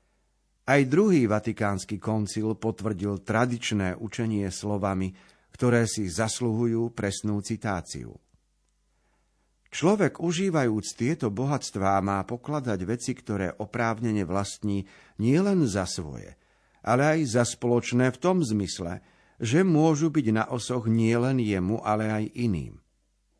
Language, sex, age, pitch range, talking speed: Slovak, male, 50-69, 100-120 Hz, 110 wpm